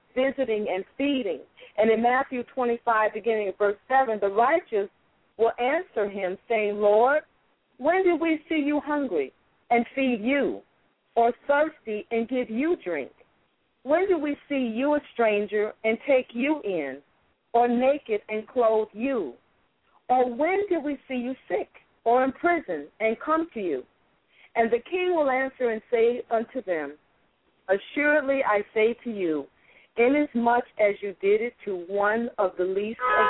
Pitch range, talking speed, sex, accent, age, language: 205-260 Hz, 160 wpm, female, American, 40-59, English